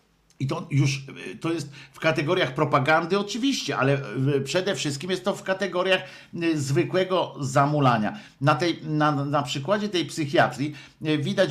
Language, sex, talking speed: Polish, male, 135 wpm